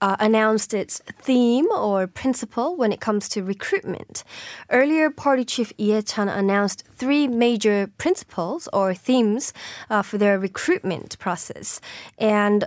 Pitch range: 195-240 Hz